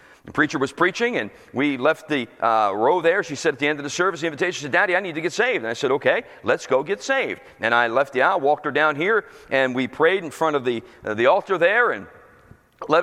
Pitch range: 135-165 Hz